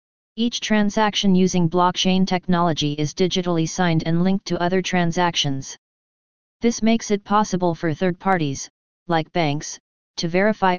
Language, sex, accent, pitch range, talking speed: English, female, American, 165-190 Hz, 135 wpm